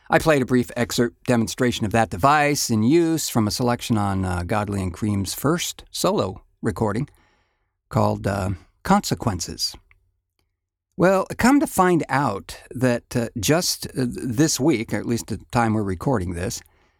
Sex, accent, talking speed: male, American, 150 wpm